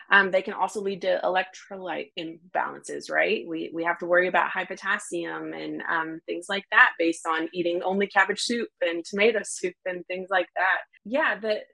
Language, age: English, 20-39